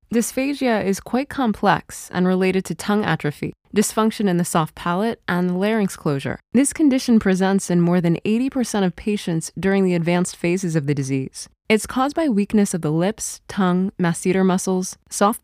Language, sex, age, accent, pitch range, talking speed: English, female, 20-39, American, 170-215 Hz, 170 wpm